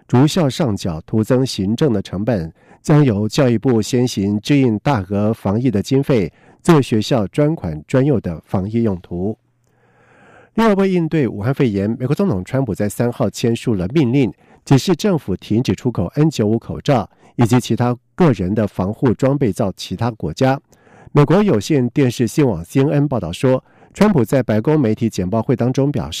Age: 50-69